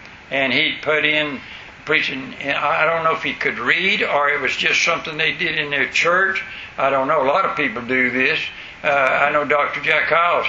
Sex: male